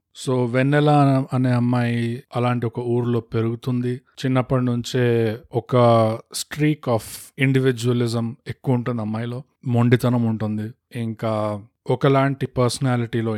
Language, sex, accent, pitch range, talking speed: Telugu, male, native, 110-130 Hz, 100 wpm